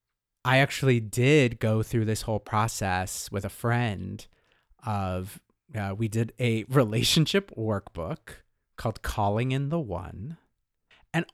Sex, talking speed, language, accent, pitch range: male, 125 wpm, English, American, 95-120 Hz